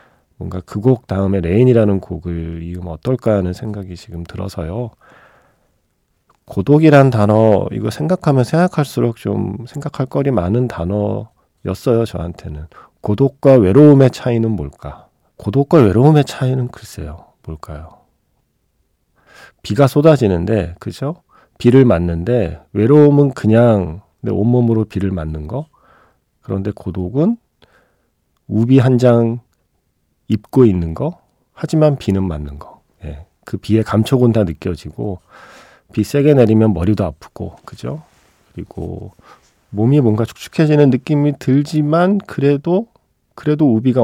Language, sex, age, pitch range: Korean, male, 40-59, 95-135 Hz